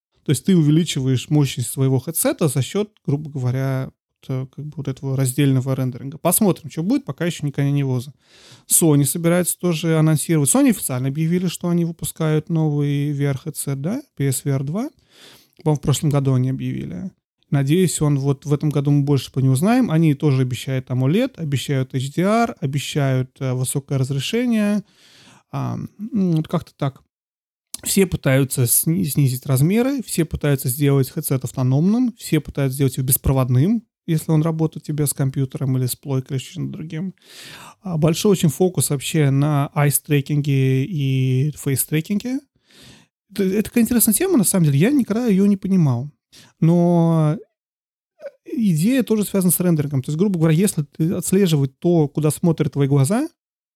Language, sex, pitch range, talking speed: Russian, male, 135-180 Hz, 155 wpm